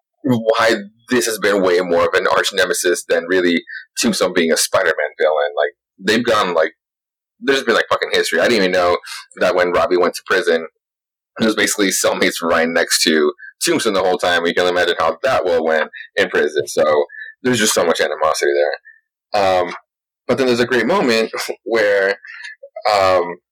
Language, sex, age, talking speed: English, male, 30-49, 180 wpm